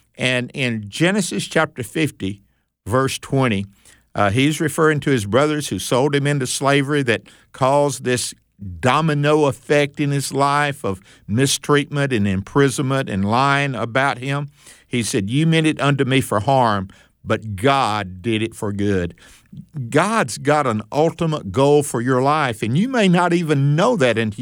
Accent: American